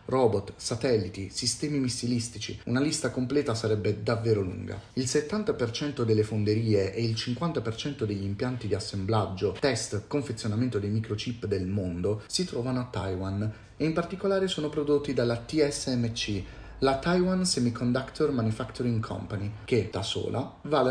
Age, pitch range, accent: 30-49, 105-135 Hz, native